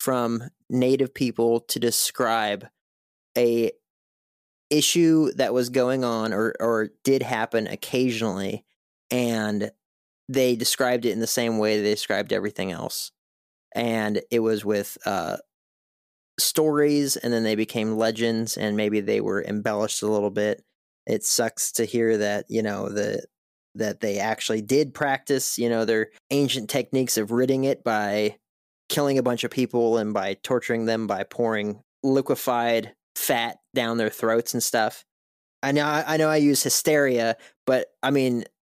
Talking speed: 150 wpm